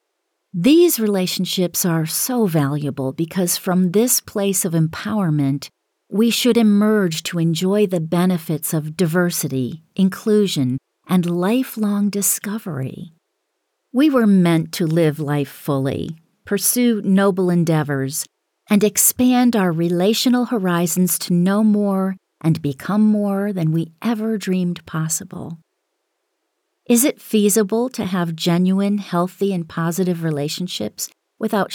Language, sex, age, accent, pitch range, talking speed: English, female, 40-59, American, 170-220 Hz, 115 wpm